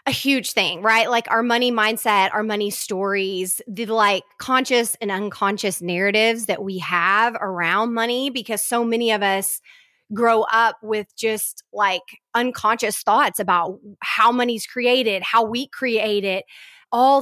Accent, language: American, English